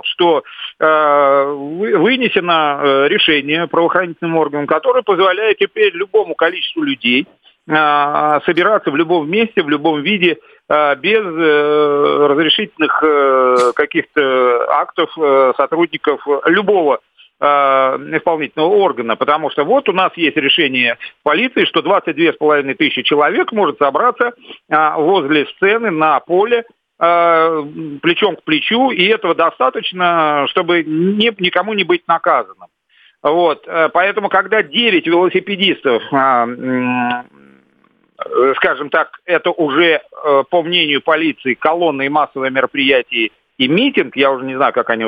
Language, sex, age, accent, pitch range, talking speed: Russian, male, 50-69, native, 145-210 Hz, 115 wpm